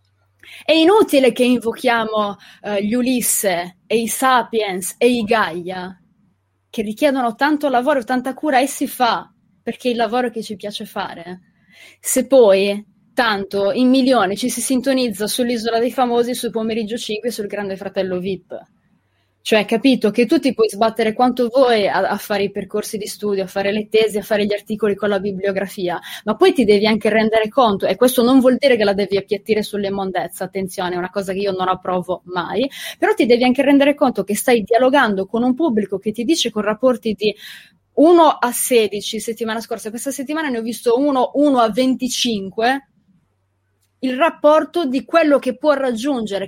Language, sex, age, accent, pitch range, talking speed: Italian, female, 20-39, native, 200-255 Hz, 185 wpm